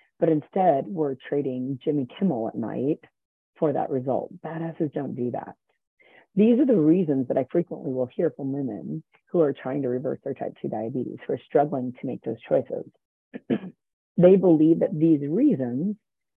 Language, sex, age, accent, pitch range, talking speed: English, female, 40-59, American, 130-165 Hz, 170 wpm